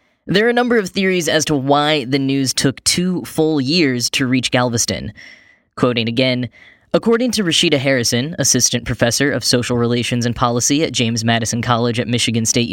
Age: 10-29